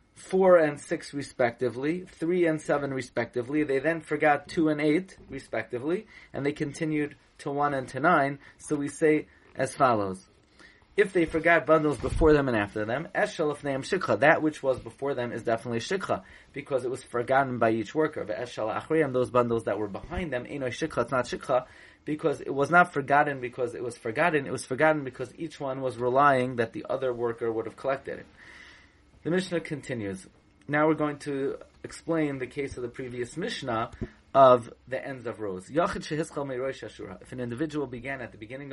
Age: 30-49